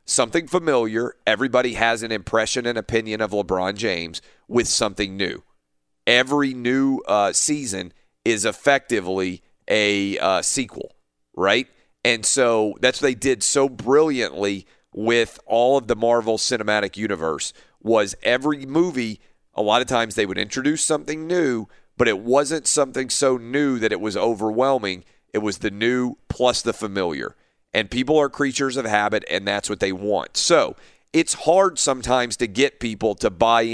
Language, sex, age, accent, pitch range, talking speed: English, male, 40-59, American, 100-125 Hz, 155 wpm